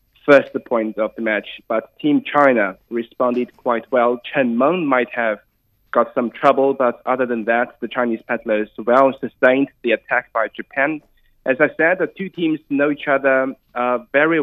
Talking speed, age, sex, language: 175 wpm, 20-39, male, English